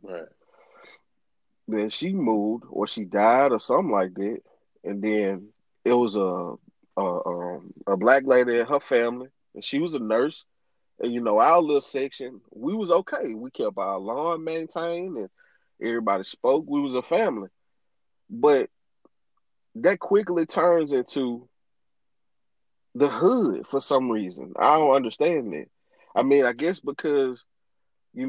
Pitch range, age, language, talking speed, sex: 115-160 Hz, 30-49, English, 150 wpm, male